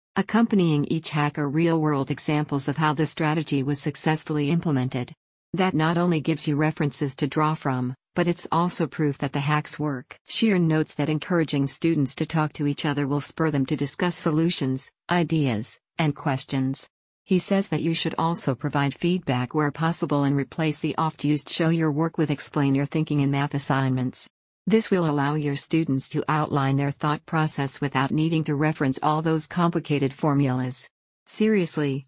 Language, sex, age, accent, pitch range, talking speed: English, female, 50-69, American, 140-165 Hz, 170 wpm